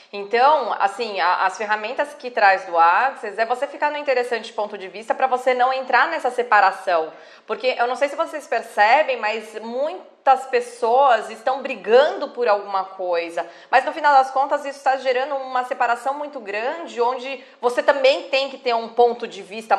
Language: Portuguese